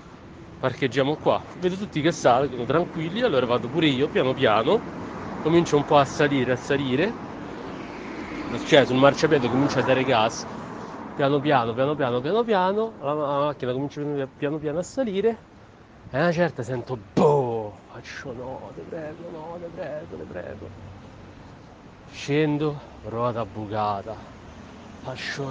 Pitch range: 130-160 Hz